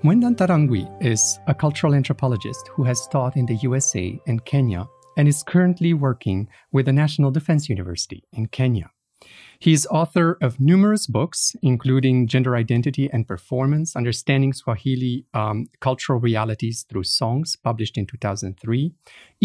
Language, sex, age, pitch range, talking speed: English, male, 40-59, 120-155 Hz, 140 wpm